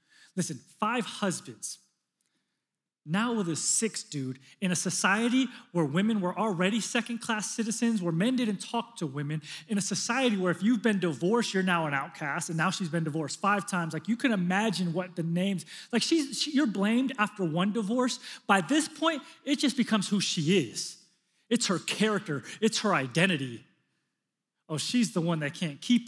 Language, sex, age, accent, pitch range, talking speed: English, male, 30-49, American, 170-230 Hz, 180 wpm